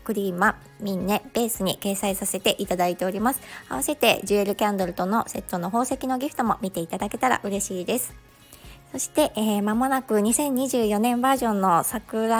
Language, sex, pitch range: Japanese, male, 190-240 Hz